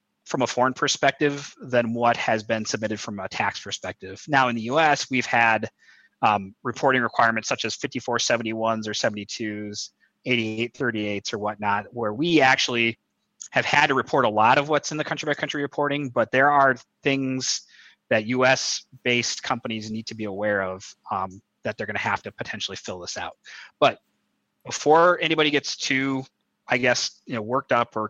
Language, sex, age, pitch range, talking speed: English, male, 30-49, 110-135 Hz, 170 wpm